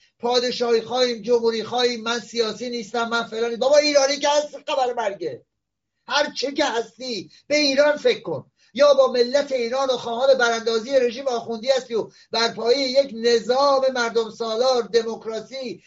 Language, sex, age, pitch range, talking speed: Persian, male, 50-69, 230-265 Hz, 135 wpm